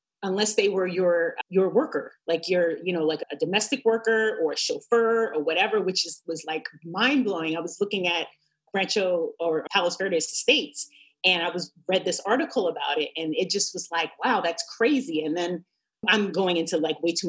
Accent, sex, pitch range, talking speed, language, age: American, female, 170-250 Hz, 200 wpm, English, 30-49